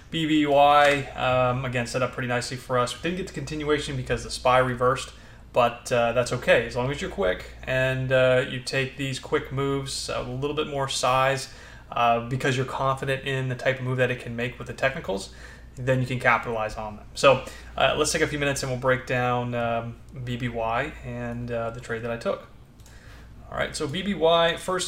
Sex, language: male, English